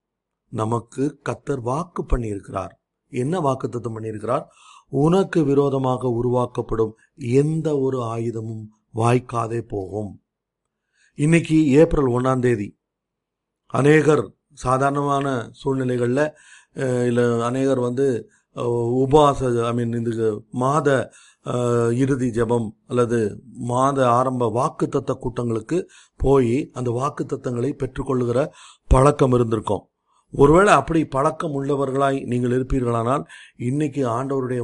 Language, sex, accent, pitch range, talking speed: Tamil, male, native, 120-140 Hz, 90 wpm